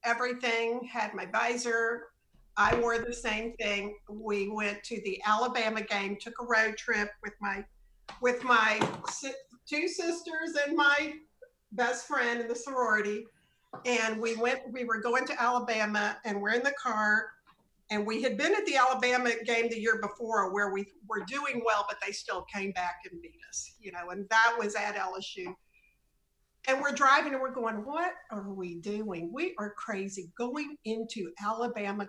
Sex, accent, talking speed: female, American, 170 wpm